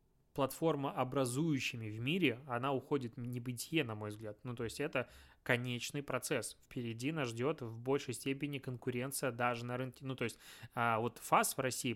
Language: Russian